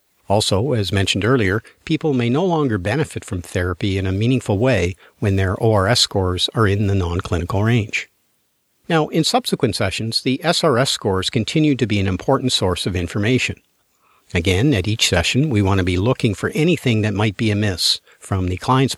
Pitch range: 100-130 Hz